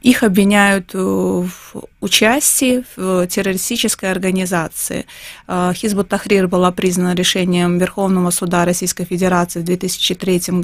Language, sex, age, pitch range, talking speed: Russian, female, 20-39, 185-215 Hz, 95 wpm